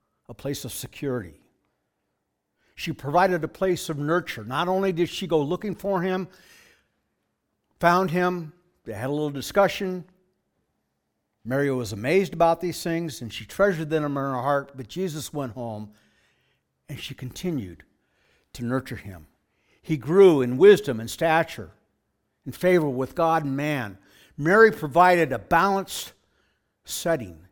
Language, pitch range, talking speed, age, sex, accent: English, 110-165 Hz, 140 wpm, 60-79, male, American